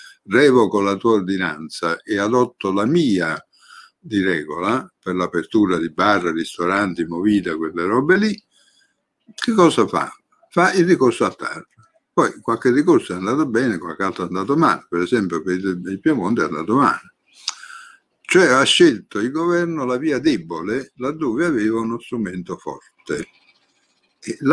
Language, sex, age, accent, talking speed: Italian, male, 60-79, native, 145 wpm